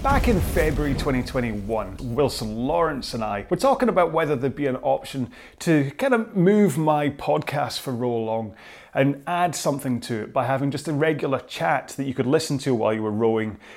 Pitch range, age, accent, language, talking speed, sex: 120-155 Hz, 30-49, British, English, 195 wpm, male